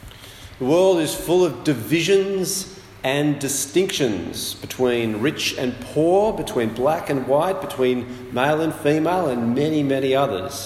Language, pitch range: English, 110-160 Hz